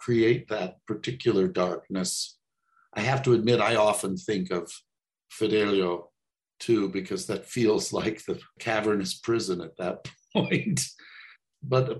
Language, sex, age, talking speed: English, male, 50-69, 125 wpm